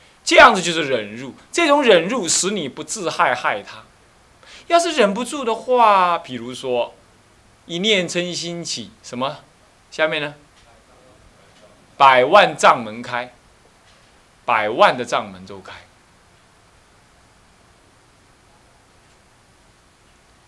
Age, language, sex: 20-39, Chinese, male